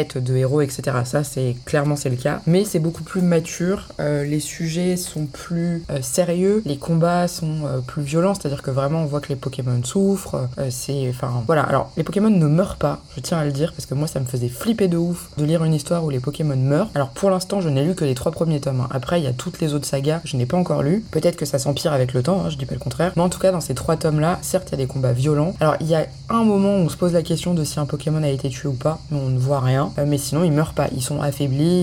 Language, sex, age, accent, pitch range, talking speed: French, female, 20-39, French, 135-165 Hz, 300 wpm